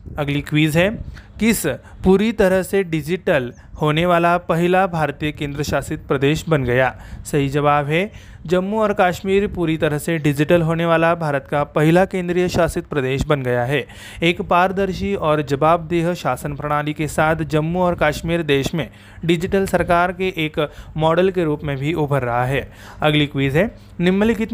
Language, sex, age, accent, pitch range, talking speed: Marathi, male, 30-49, native, 150-180 Hz, 165 wpm